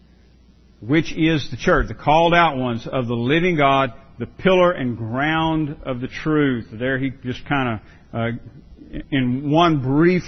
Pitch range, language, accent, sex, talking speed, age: 120-155 Hz, English, American, male, 165 wpm, 50-69